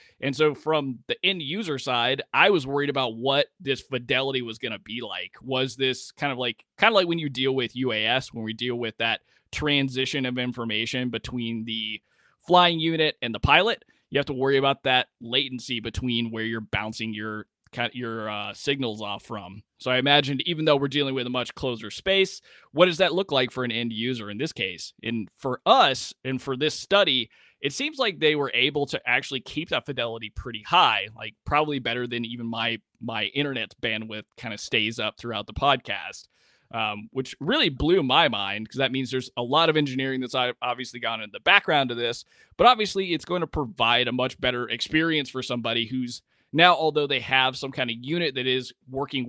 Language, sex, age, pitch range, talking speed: English, male, 20-39, 115-145 Hz, 205 wpm